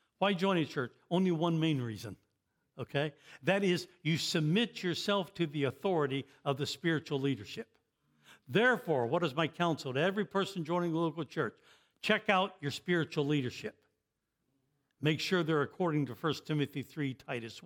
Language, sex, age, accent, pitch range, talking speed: English, male, 60-79, American, 140-185 Hz, 160 wpm